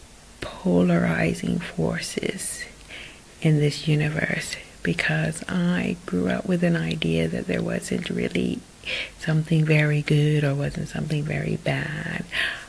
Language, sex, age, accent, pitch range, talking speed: English, female, 40-59, American, 140-175 Hz, 115 wpm